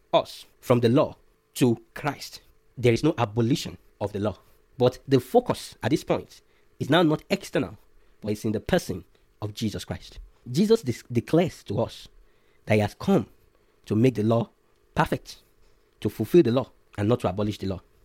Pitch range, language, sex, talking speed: 110-155 Hz, English, male, 180 wpm